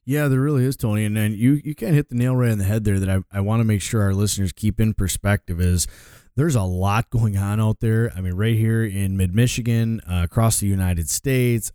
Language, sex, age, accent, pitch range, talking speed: English, male, 30-49, American, 100-120 Hz, 240 wpm